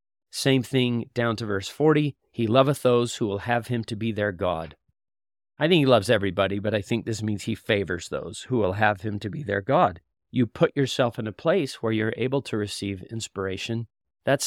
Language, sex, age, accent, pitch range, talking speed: English, male, 40-59, American, 100-120 Hz, 210 wpm